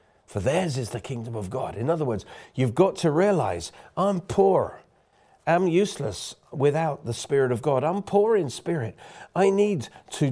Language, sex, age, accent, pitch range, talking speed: English, male, 50-69, British, 115-165 Hz, 175 wpm